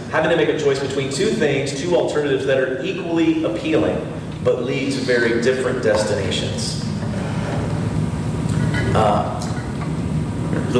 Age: 30-49